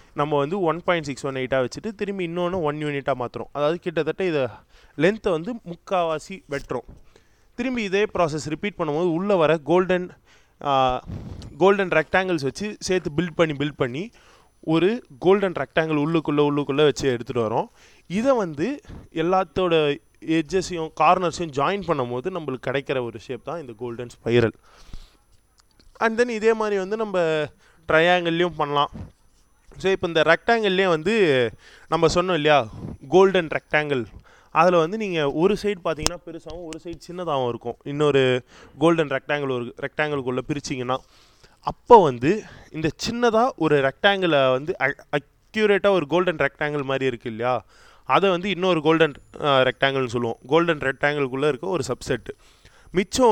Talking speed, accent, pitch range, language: 135 wpm, native, 135-185 Hz, Tamil